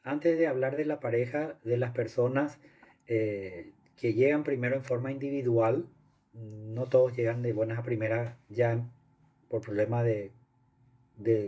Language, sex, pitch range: Spanish, male, 115-130 Hz